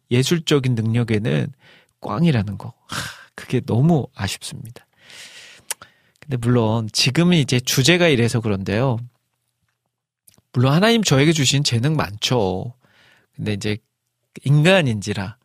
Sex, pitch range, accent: male, 115-155 Hz, native